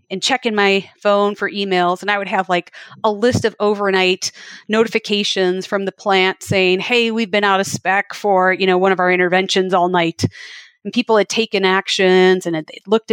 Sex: female